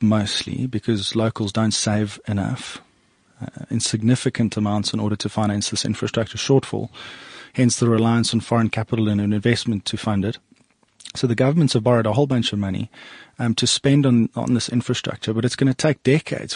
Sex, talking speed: male, 190 wpm